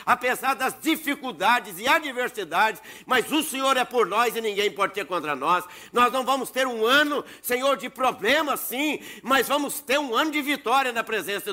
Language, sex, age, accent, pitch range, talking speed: Portuguese, male, 60-79, Brazilian, 230-280 Hz, 185 wpm